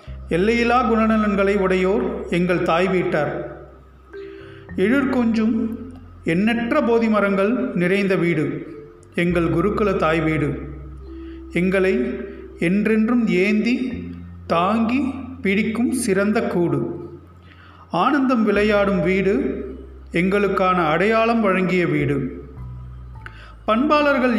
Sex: male